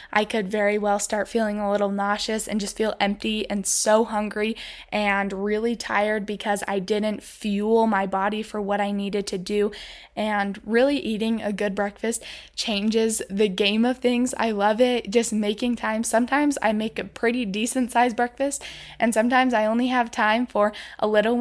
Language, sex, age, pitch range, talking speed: English, female, 10-29, 205-230 Hz, 180 wpm